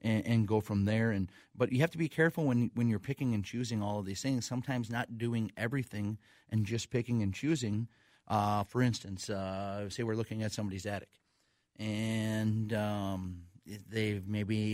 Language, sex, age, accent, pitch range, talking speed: English, male, 30-49, American, 100-115 Hz, 185 wpm